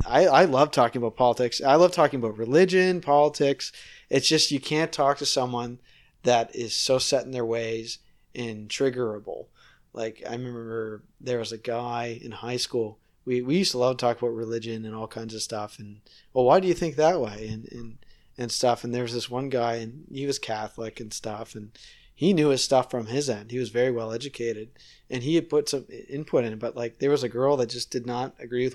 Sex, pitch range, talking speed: male, 115-145 Hz, 225 wpm